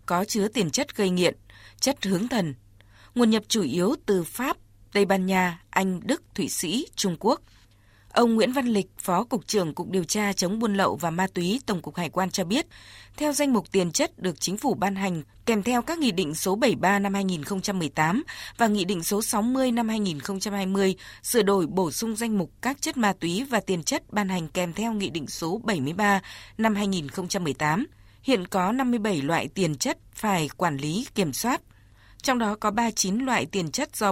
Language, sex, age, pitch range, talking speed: Vietnamese, female, 20-39, 180-225 Hz, 200 wpm